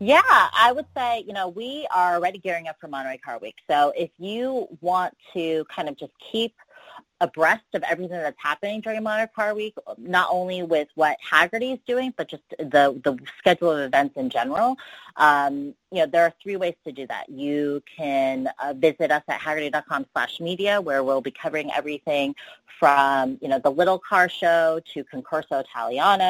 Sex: female